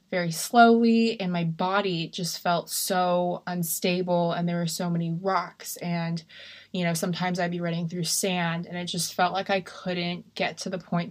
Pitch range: 175-200 Hz